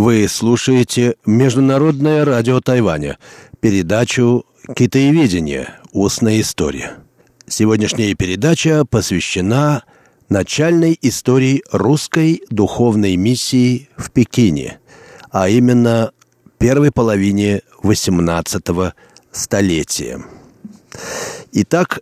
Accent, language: native, Russian